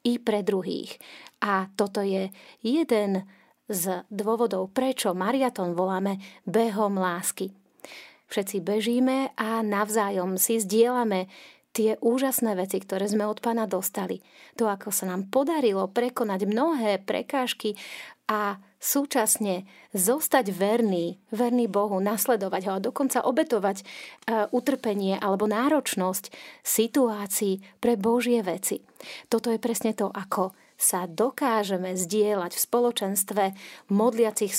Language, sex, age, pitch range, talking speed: Slovak, female, 30-49, 195-240 Hz, 115 wpm